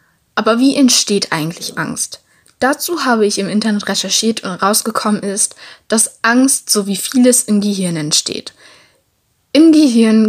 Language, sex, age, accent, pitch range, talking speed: German, female, 10-29, German, 195-240 Hz, 140 wpm